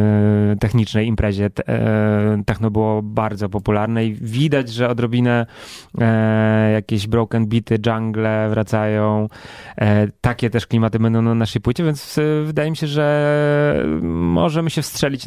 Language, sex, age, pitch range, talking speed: Polish, male, 20-39, 105-125 Hz, 120 wpm